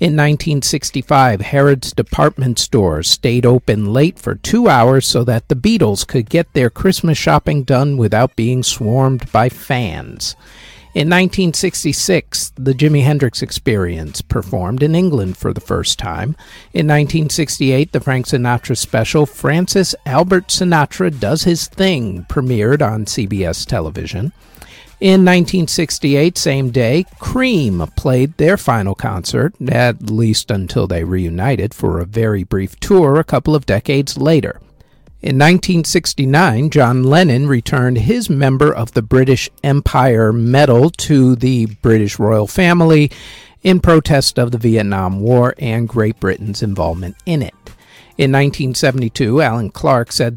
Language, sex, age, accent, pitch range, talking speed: English, male, 50-69, American, 115-150 Hz, 135 wpm